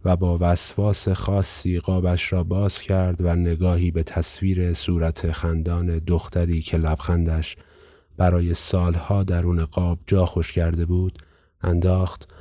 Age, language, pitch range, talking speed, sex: 30-49, Persian, 85-95 Hz, 120 wpm, male